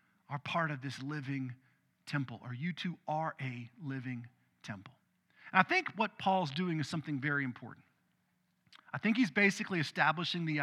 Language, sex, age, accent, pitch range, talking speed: English, male, 40-59, American, 145-190 Hz, 165 wpm